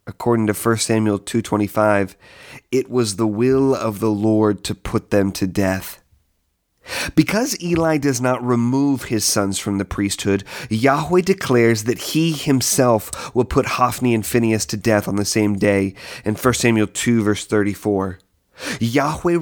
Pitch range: 105-135 Hz